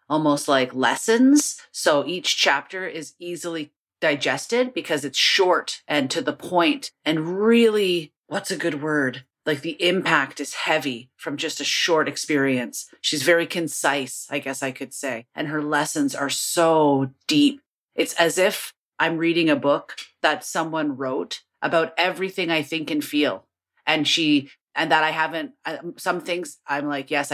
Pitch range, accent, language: 140-170 Hz, American, English